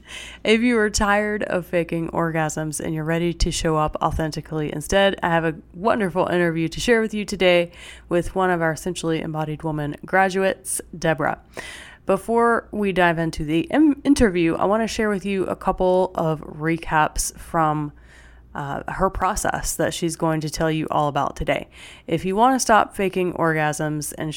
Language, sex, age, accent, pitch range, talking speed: English, female, 20-39, American, 155-175 Hz, 175 wpm